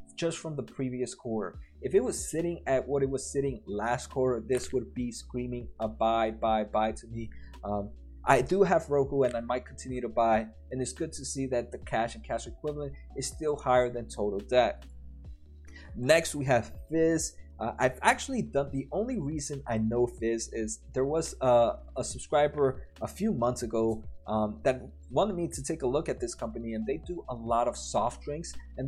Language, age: English, 20-39